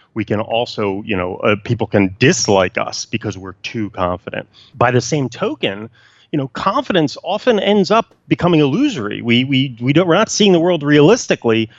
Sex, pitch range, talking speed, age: male, 120-180 Hz, 185 wpm, 30-49